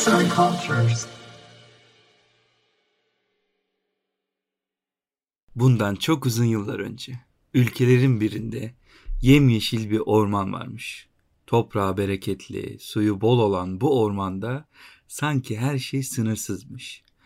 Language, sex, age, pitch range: Turkish, male, 50-69, 105-135 Hz